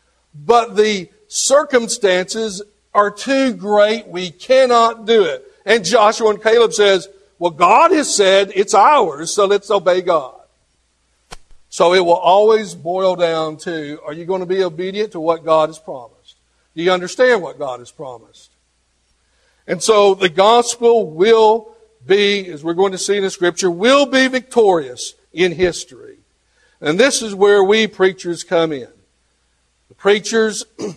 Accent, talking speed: American, 150 wpm